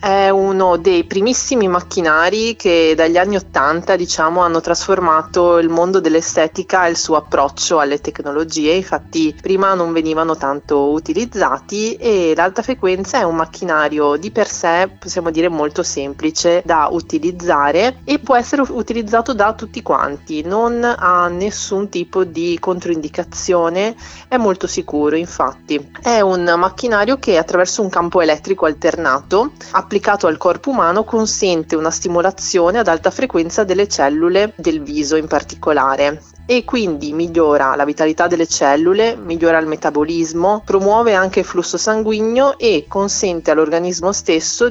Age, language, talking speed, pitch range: 30-49, Italian, 140 wpm, 160-210 Hz